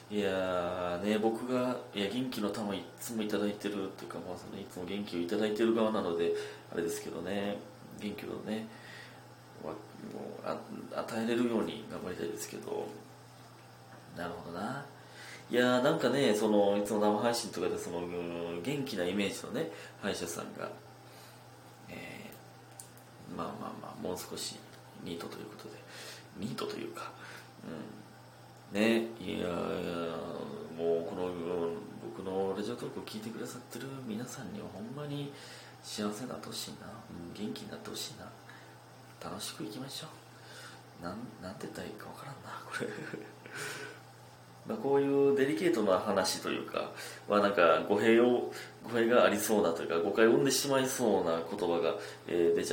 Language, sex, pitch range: Japanese, male, 85-115 Hz